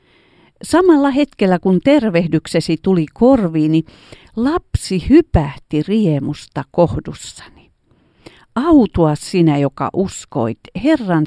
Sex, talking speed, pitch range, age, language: female, 80 wpm, 155-245 Hz, 50-69, Finnish